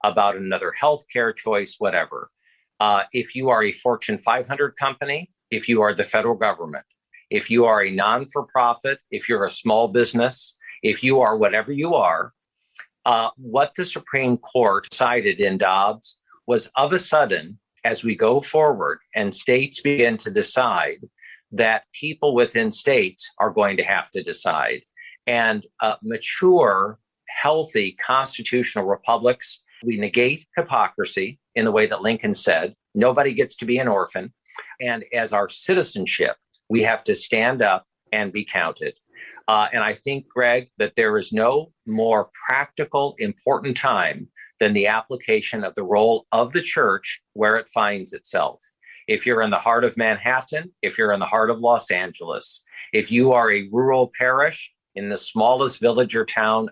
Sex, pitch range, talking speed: male, 115-160 Hz, 160 wpm